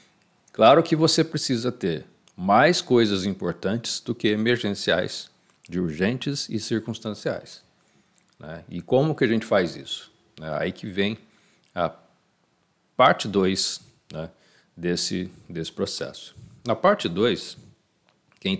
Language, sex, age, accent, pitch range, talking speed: Portuguese, male, 60-79, Brazilian, 90-125 Hz, 125 wpm